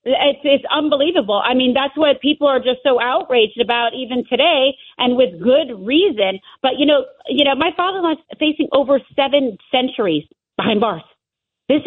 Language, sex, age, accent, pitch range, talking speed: English, female, 40-59, American, 225-275 Hz, 170 wpm